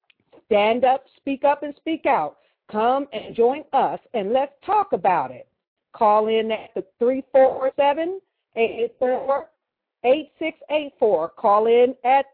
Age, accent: 50-69, American